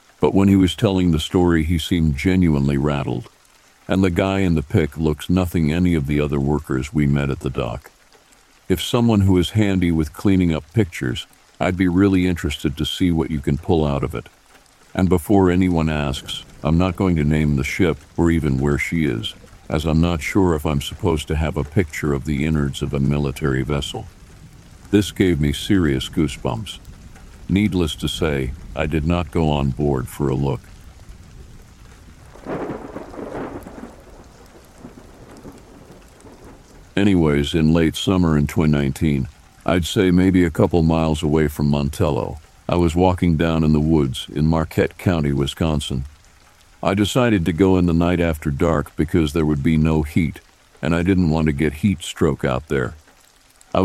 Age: 50-69